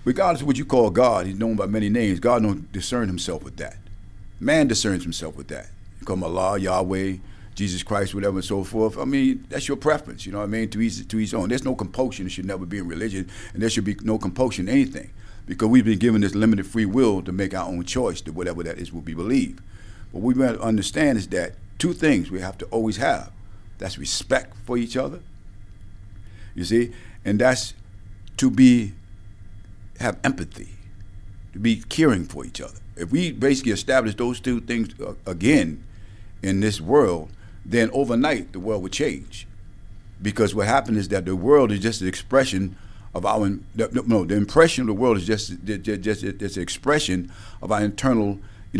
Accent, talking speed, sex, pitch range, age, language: American, 200 wpm, male, 95-115 Hz, 50-69, English